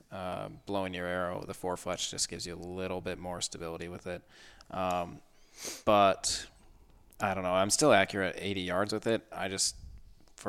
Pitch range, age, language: 90-100 Hz, 20-39, English